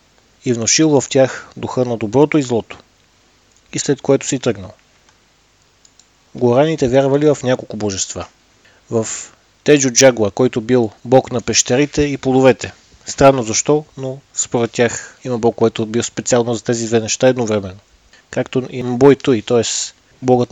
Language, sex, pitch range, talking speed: Bulgarian, male, 115-135 Hz, 145 wpm